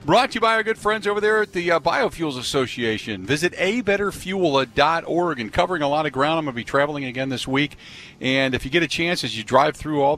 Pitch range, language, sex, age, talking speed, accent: 120-165 Hz, English, male, 50-69, 235 wpm, American